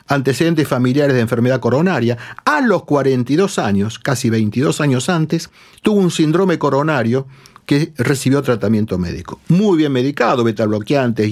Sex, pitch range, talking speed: male, 115-160 Hz, 135 wpm